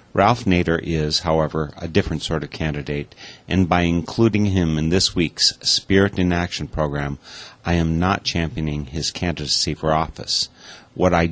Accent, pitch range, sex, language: American, 80-95 Hz, male, English